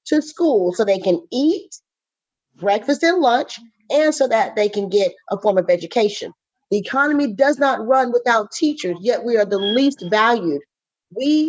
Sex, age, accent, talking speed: female, 40-59, American, 170 wpm